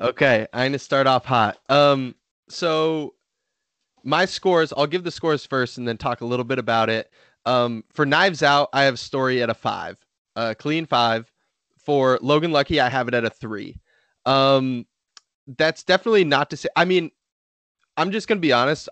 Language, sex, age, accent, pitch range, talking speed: English, male, 20-39, American, 125-155 Hz, 185 wpm